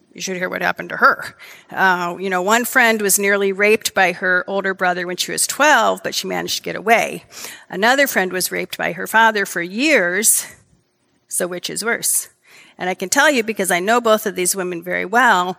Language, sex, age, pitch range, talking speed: English, female, 40-59, 185-225 Hz, 215 wpm